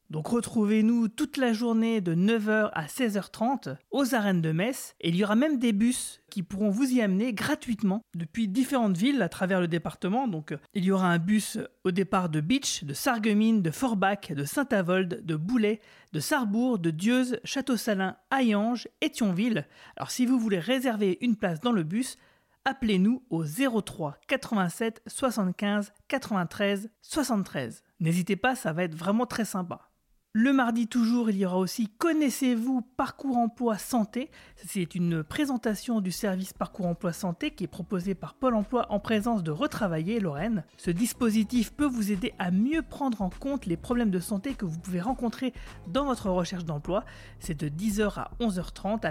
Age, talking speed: 30-49, 170 wpm